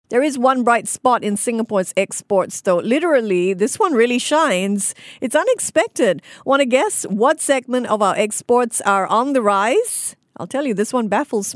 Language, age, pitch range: English, 50-69, 190-260 Hz